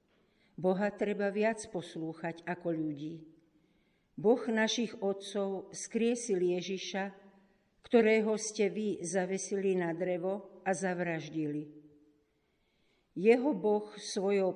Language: Slovak